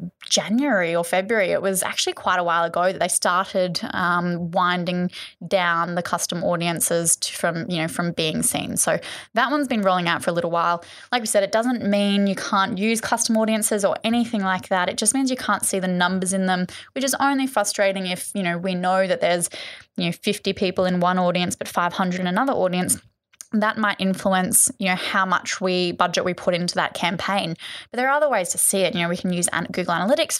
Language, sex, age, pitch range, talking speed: English, female, 10-29, 175-210 Hz, 225 wpm